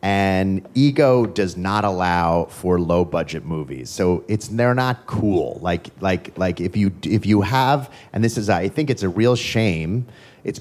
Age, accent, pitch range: 30-49, American, 100-135 Hz